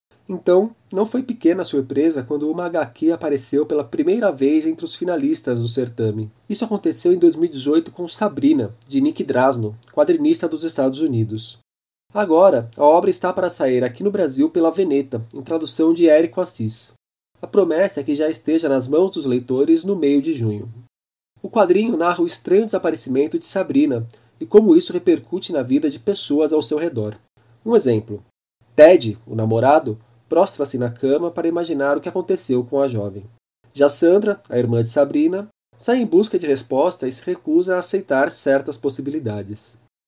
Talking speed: 170 wpm